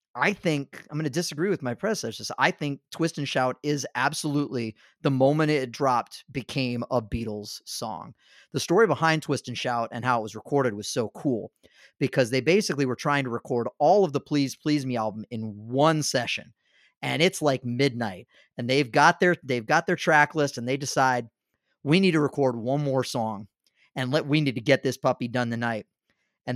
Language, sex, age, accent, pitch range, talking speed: English, male, 30-49, American, 125-155 Hz, 200 wpm